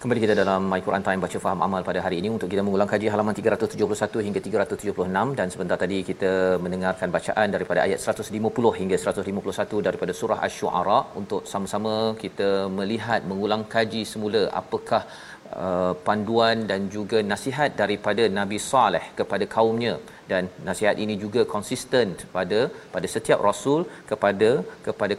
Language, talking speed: Malayalam, 150 wpm